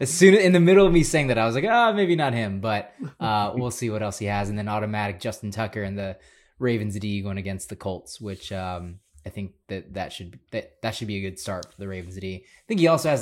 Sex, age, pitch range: male, 20-39, 100-120 Hz